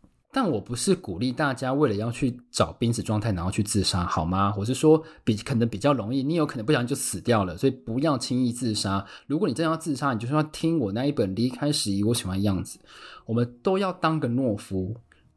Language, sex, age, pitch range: Chinese, male, 20-39, 105-155 Hz